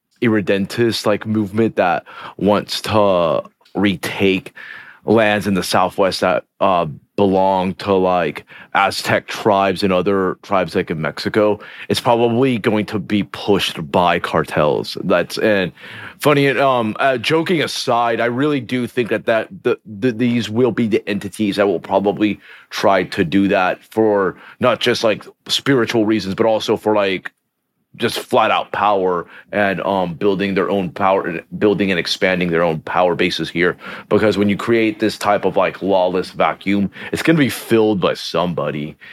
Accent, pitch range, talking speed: American, 95-115 Hz, 160 wpm